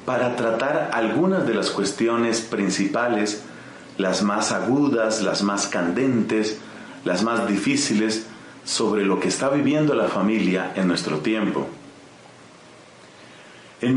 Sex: male